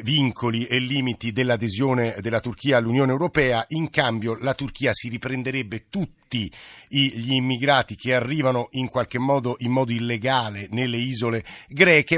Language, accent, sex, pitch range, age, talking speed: Italian, native, male, 115-140 Hz, 50-69, 140 wpm